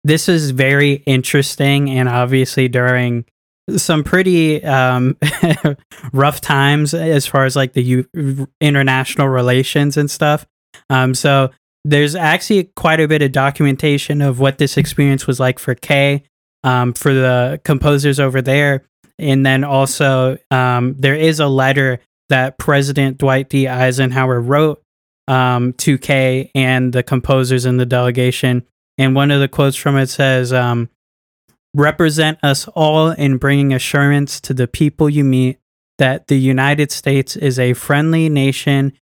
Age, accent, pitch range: 20-39, American, 130-145 Hz